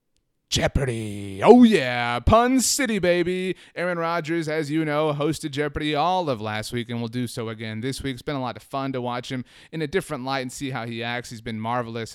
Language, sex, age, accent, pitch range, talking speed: English, male, 30-49, American, 120-165 Hz, 220 wpm